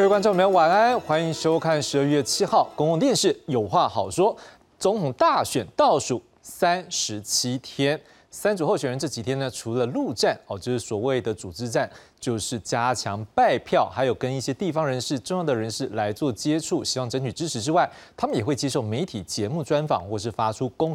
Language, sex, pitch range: Chinese, male, 120-160 Hz